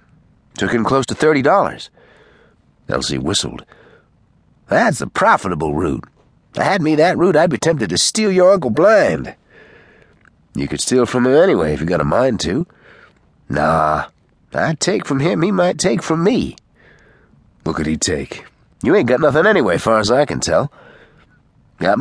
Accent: American